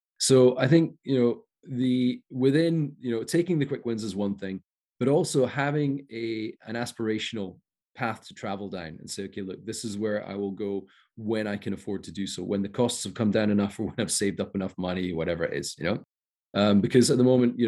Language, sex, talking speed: English, male, 230 wpm